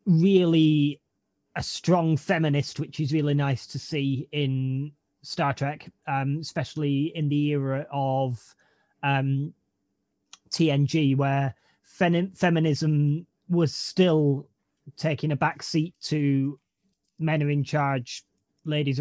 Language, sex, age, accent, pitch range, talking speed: English, male, 30-49, British, 135-160 Hz, 115 wpm